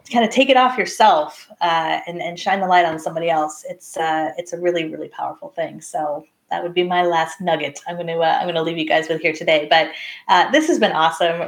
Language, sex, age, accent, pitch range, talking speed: English, female, 30-49, American, 185-245 Hz, 255 wpm